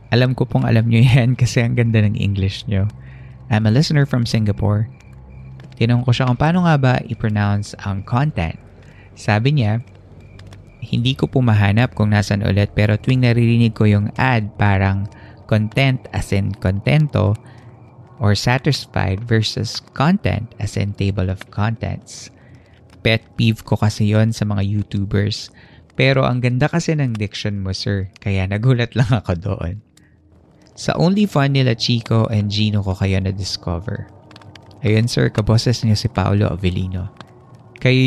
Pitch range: 100-125 Hz